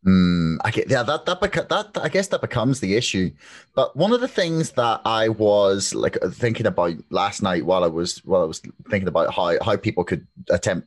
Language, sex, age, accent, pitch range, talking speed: English, male, 30-49, British, 95-120 Hz, 220 wpm